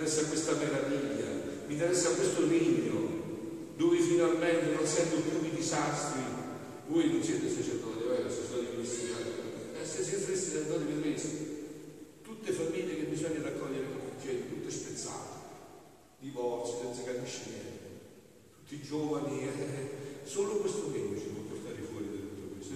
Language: Italian